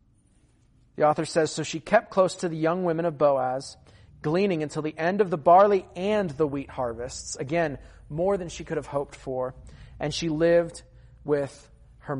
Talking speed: 180 wpm